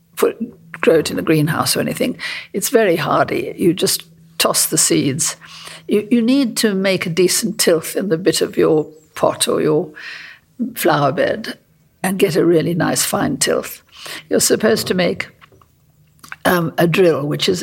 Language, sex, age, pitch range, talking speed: English, female, 60-79, 165-225 Hz, 170 wpm